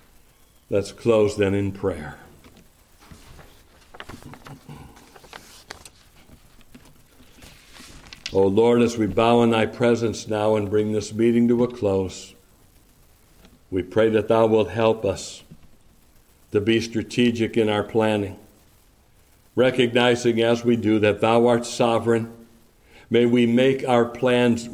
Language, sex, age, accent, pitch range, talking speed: English, male, 60-79, American, 95-115 Hz, 115 wpm